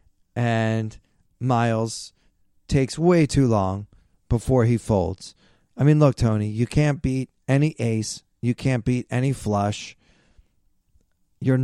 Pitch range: 105-140 Hz